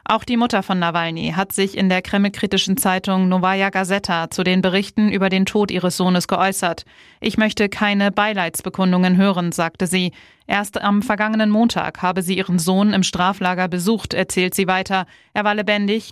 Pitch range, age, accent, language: 180-200 Hz, 20-39, German, German